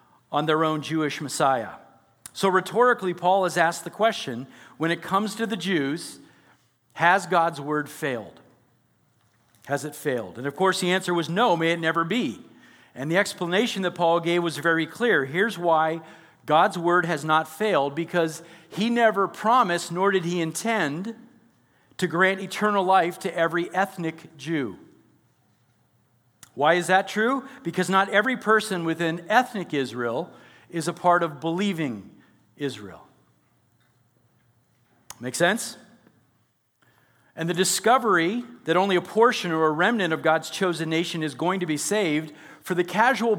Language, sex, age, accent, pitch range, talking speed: English, male, 50-69, American, 155-195 Hz, 150 wpm